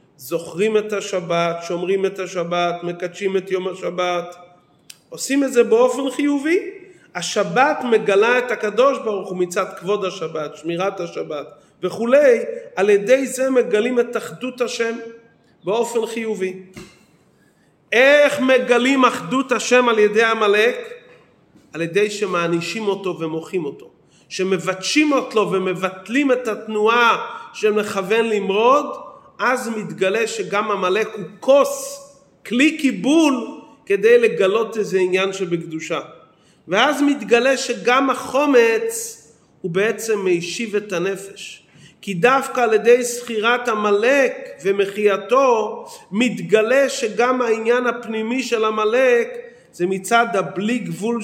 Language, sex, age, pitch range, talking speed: Hebrew, male, 40-59, 190-260 Hz, 110 wpm